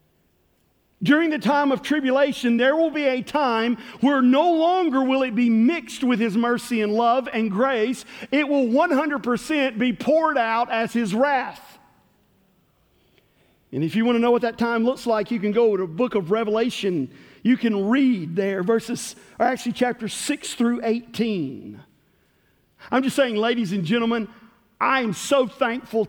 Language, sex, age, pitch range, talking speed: English, male, 50-69, 230-275 Hz, 170 wpm